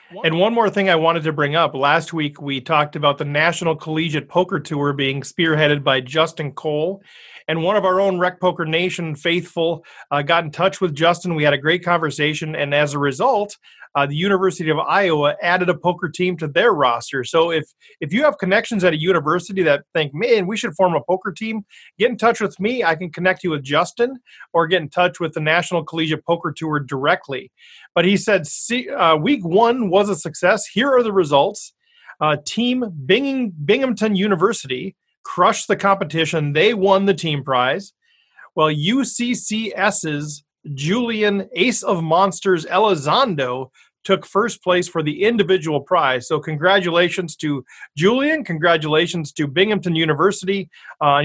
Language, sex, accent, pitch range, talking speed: English, male, American, 155-195 Hz, 175 wpm